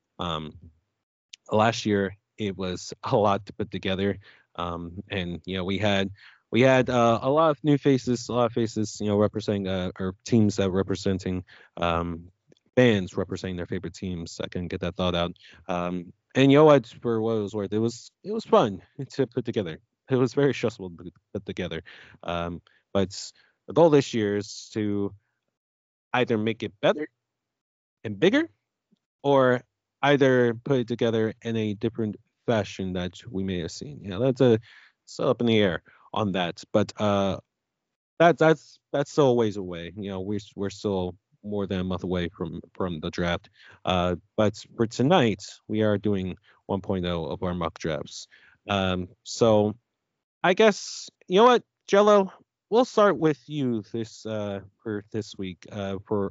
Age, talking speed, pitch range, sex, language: 20-39, 180 wpm, 95-120 Hz, male, English